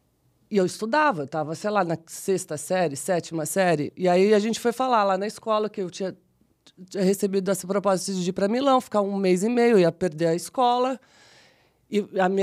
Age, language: 20-39, Portuguese